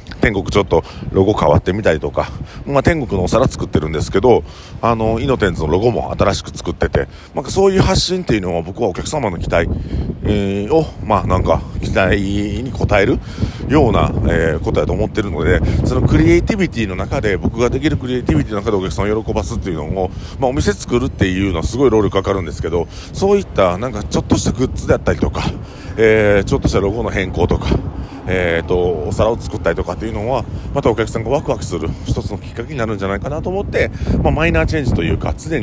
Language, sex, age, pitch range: Japanese, male, 40-59, 90-115 Hz